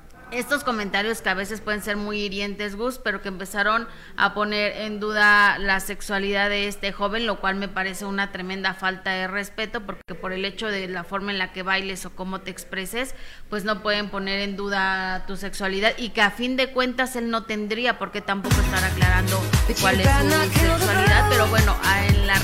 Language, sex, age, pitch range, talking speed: Spanish, female, 30-49, 195-220 Hz, 205 wpm